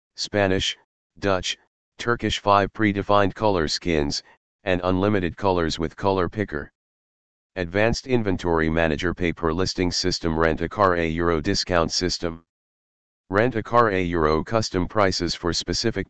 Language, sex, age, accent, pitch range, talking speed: English, male, 40-59, American, 85-100 Hz, 130 wpm